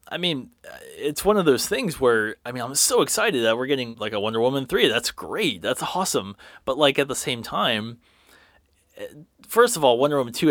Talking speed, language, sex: 210 wpm, English, male